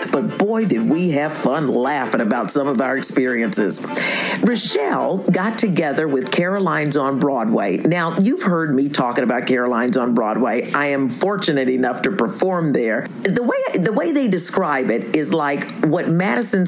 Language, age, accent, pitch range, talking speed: English, 50-69, American, 160-230 Hz, 165 wpm